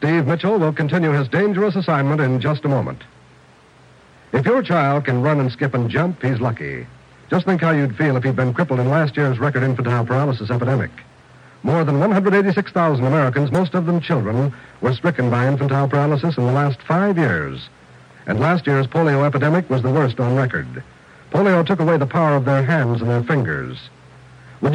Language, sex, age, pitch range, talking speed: English, male, 60-79, 130-165 Hz, 190 wpm